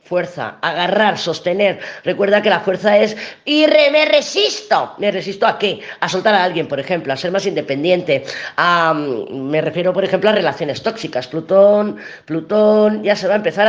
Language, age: Spanish, 30-49